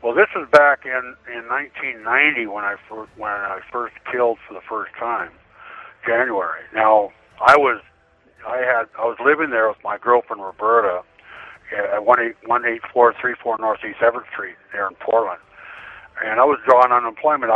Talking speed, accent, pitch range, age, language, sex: 155 wpm, American, 105-120 Hz, 60-79, English, male